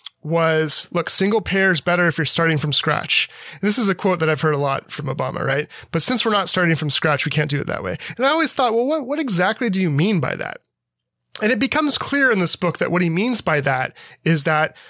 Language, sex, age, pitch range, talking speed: English, male, 30-49, 150-190 Hz, 260 wpm